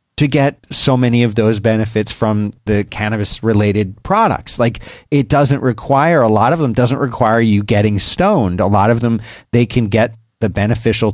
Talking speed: 185 wpm